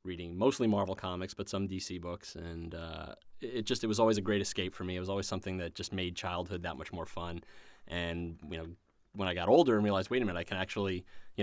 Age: 30-49